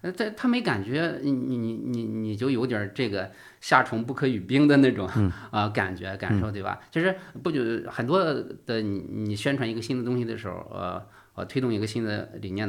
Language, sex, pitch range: Chinese, male, 100-130 Hz